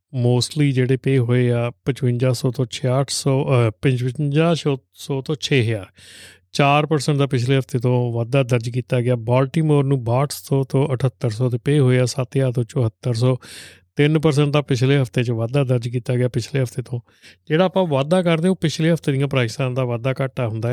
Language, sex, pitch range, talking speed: Punjabi, male, 120-140 Hz, 160 wpm